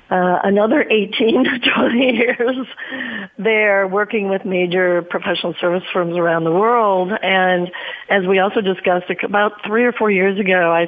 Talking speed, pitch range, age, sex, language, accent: 155 wpm, 185-220 Hz, 40-59, female, English, American